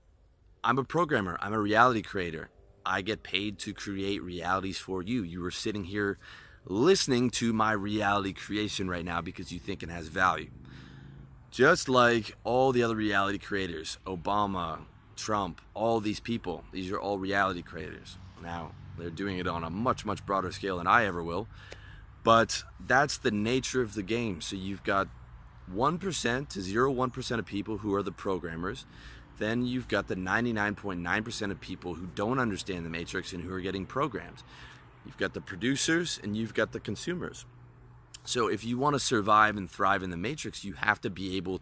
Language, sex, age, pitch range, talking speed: English, male, 30-49, 95-115 Hz, 180 wpm